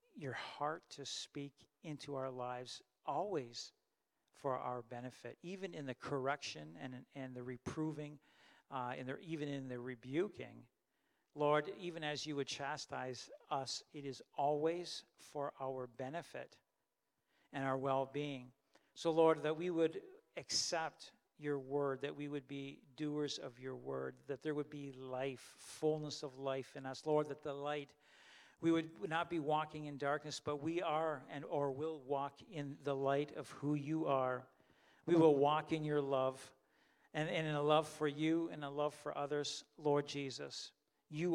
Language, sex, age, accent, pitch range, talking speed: English, male, 50-69, American, 135-155 Hz, 165 wpm